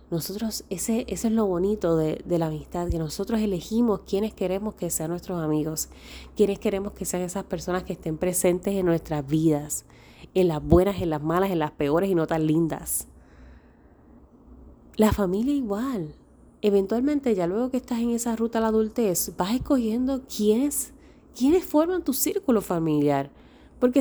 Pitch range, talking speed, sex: 170-215 Hz, 165 wpm, female